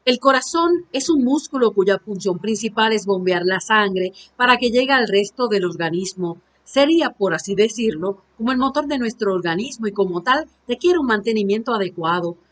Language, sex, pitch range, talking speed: Spanish, female, 200-255 Hz, 175 wpm